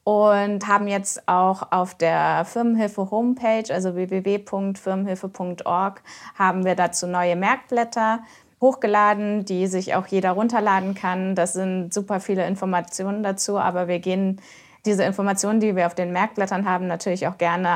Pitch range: 175-200 Hz